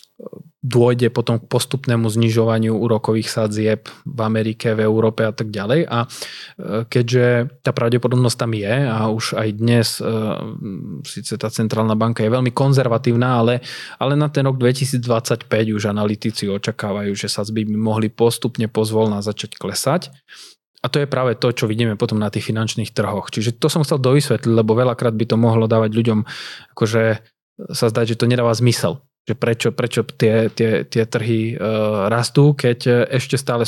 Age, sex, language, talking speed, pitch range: 20-39, male, Slovak, 160 wpm, 110-125 Hz